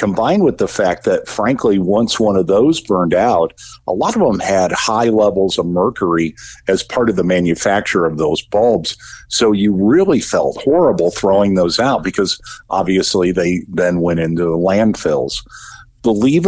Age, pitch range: 50-69, 90-110 Hz